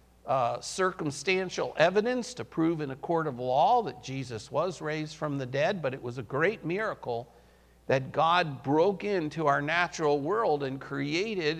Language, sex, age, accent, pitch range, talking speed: English, male, 50-69, American, 140-195 Hz, 165 wpm